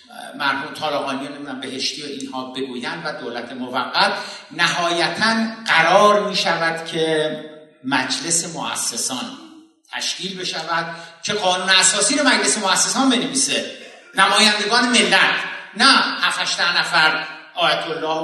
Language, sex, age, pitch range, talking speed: Persian, male, 60-79, 160-210 Hz, 110 wpm